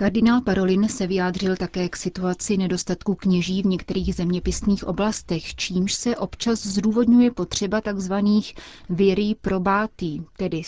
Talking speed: 125 wpm